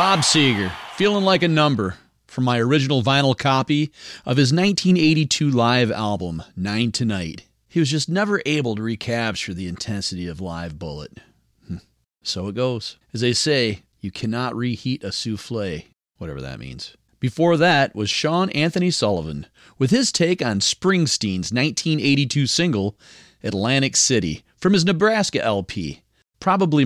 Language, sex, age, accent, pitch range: Japanese, male, 40-59, American, 110-180 Hz